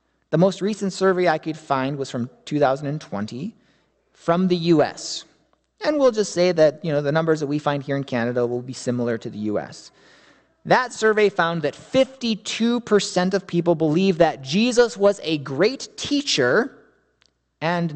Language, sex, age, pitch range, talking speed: English, male, 30-49, 145-210 Hz, 165 wpm